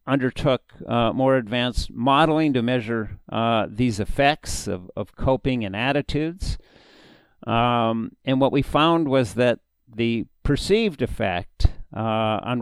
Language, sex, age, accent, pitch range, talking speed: English, male, 50-69, American, 105-130 Hz, 130 wpm